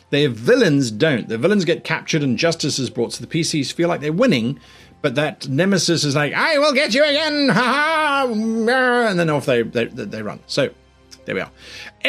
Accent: British